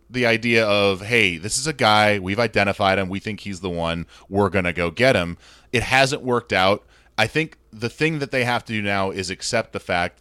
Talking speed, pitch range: 235 wpm, 90-115 Hz